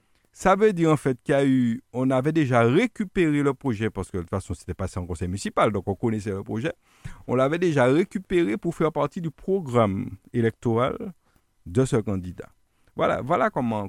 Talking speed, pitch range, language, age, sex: 180 wpm, 95-130 Hz, French, 50-69, male